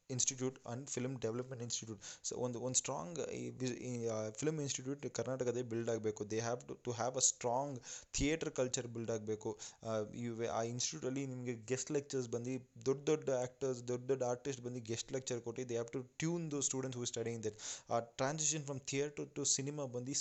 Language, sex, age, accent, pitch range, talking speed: Kannada, male, 20-39, native, 115-135 Hz, 170 wpm